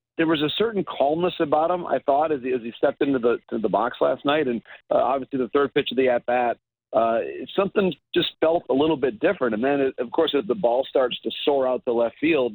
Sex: male